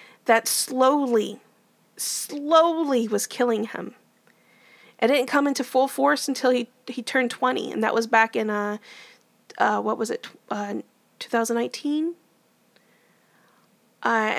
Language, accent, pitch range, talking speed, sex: English, American, 230-265 Hz, 125 wpm, female